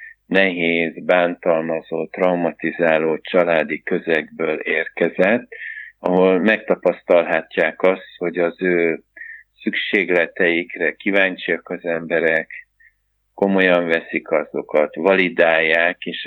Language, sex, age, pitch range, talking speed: Hungarian, male, 50-69, 80-90 Hz, 75 wpm